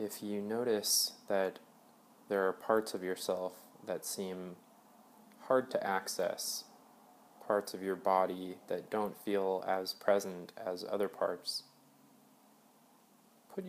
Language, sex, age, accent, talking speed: English, male, 20-39, American, 120 wpm